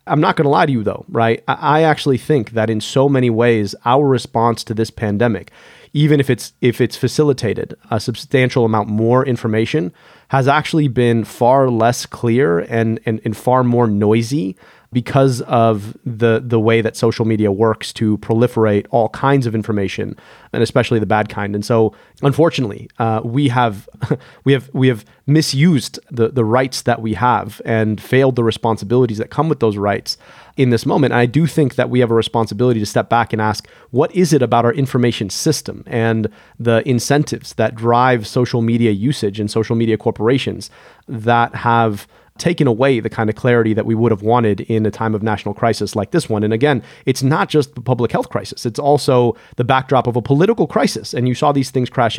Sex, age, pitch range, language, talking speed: male, 30-49, 110-130 Hz, English, 200 wpm